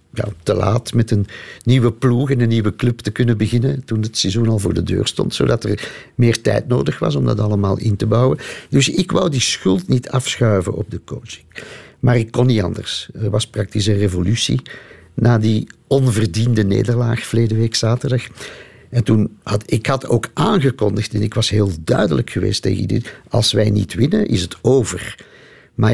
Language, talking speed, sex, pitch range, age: Dutch, 195 wpm, male, 105-125 Hz, 50-69